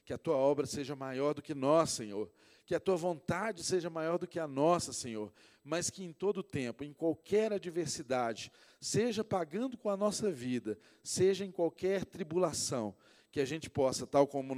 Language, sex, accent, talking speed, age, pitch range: Portuguese, male, Brazilian, 190 wpm, 40-59, 115-165 Hz